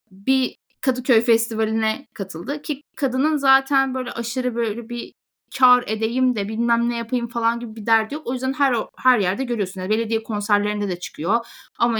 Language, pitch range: Turkish, 205-265 Hz